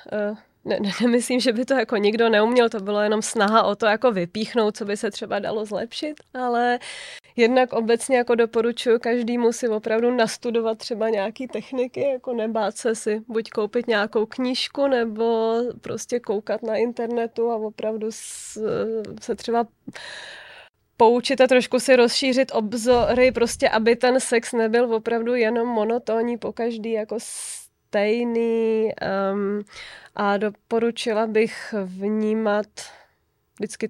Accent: native